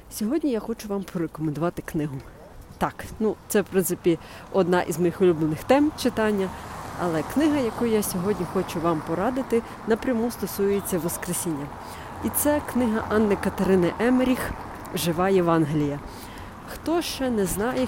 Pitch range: 175-230 Hz